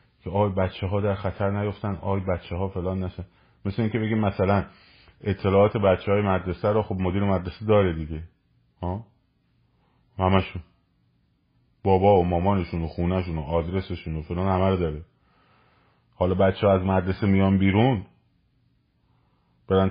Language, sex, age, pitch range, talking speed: Persian, male, 30-49, 85-105 Hz, 140 wpm